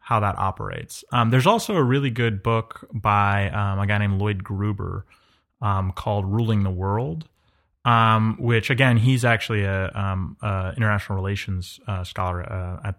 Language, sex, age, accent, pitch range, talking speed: English, male, 20-39, American, 95-115 Hz, 165 wpm